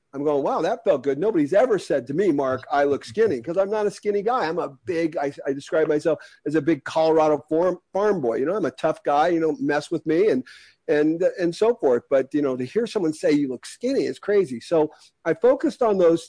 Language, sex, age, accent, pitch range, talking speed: English, male, 50-69, American, 145-190 Hz, 255 wpm